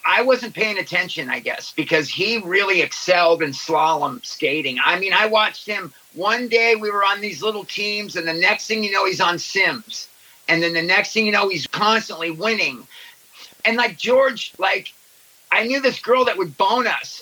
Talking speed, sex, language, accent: 200 wpm, male, English, American